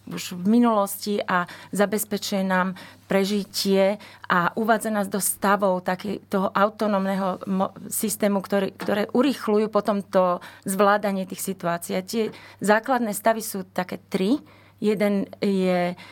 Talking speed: 125 wpm